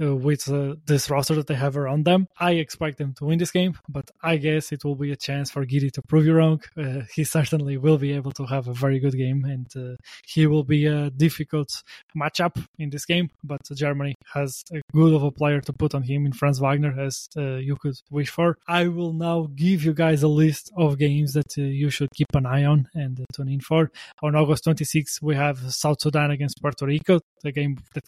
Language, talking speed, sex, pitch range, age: English, 235 wpm, male, 145-160 Hz, 20-39